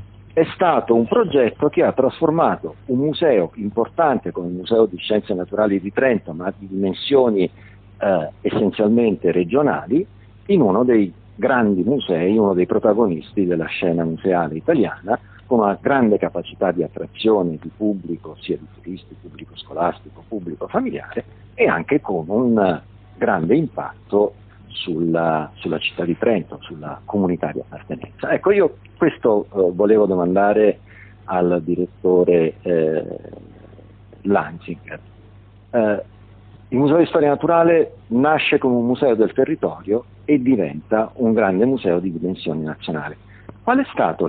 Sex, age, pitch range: male, 50-69, 90-105 Hz